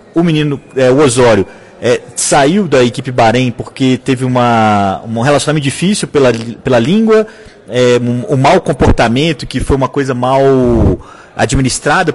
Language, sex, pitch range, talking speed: Portuguese, male, 125-165 Hz, 125 wpm